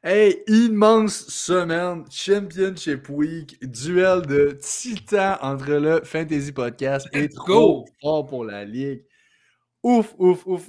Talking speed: 120 wpm